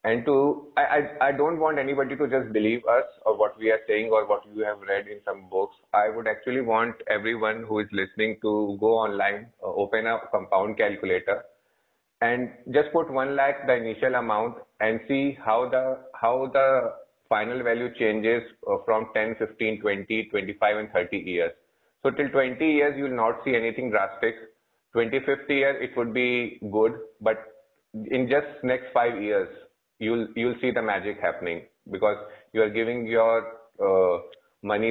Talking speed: 180 wpm